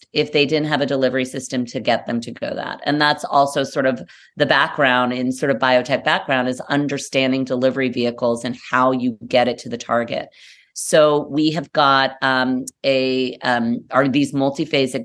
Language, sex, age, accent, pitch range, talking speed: English, female, 30-49, American, 125-145 Hz, 185 wpm